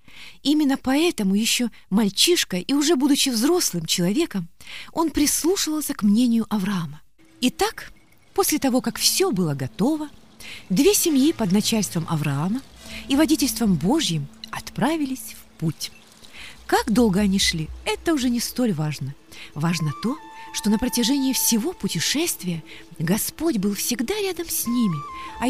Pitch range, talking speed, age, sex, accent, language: 190-305 Hz, 130 wpm, 30-49, female, native, Russian